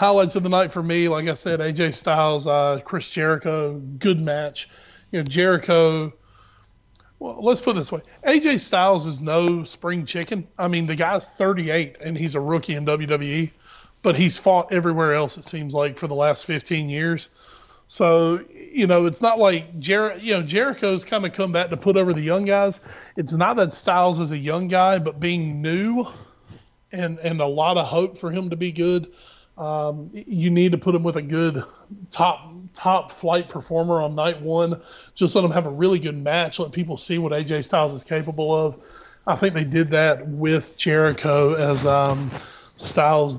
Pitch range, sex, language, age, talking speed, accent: 155-180 Hz, male, English, 30-49, 195 wpm, American